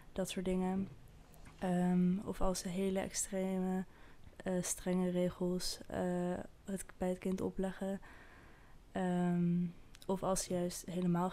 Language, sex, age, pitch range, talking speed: Dutch, female, 20-39, 180-195 Hz, 125 wpm